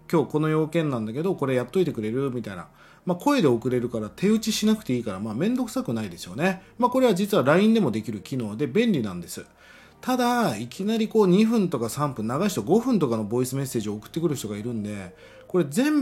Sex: male